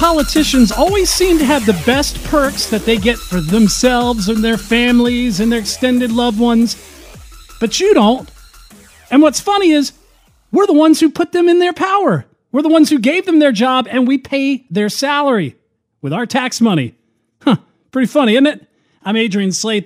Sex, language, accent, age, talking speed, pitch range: male, English, American, 40-59, 185 wpm, 185-250 Hz